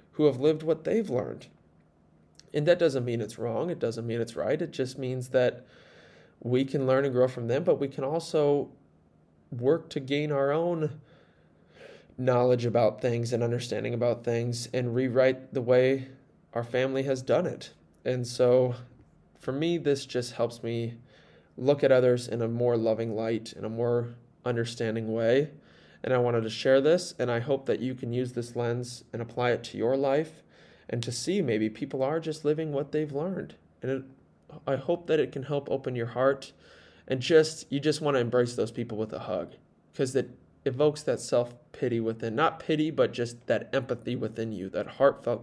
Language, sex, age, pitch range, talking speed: English, male, 20-39, 120-145 Hz, 190 wpm